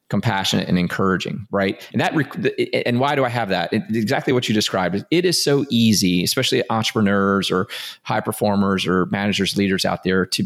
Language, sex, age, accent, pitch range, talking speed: English, male, 30-49, American, 95-120 Hz, 185 wpm